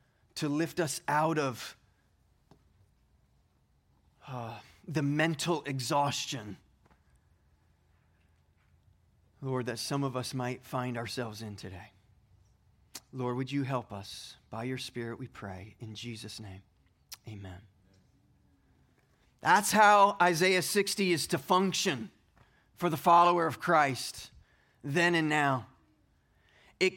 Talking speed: 110 wpm